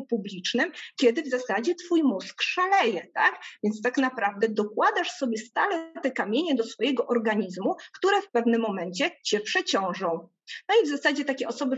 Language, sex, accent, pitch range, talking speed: Polish, female, native, 205-270 Hz, 160 wpm